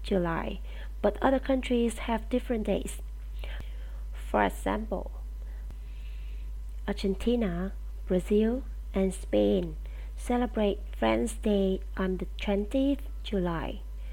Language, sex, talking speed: English, female, 85 wpm